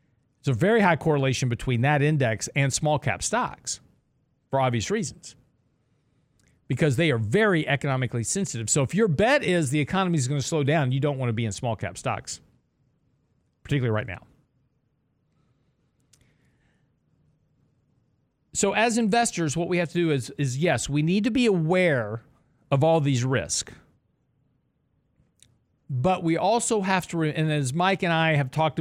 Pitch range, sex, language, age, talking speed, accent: 125-165 Hz, male, English, 40-59, 160 wpm, American